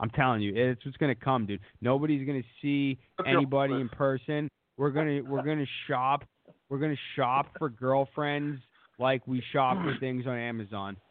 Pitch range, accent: 130-170 Hz, American